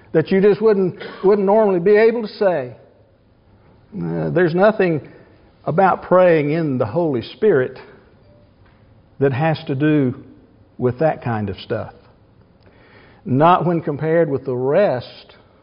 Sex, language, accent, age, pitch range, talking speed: male, English, American, 60-79, 125-195 Hz, 125 wpm